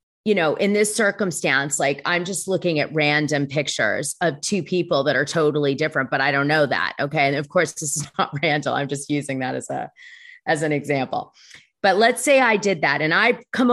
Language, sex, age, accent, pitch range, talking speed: English, female, 30-49, American, 155-215 Hz, 220 wpm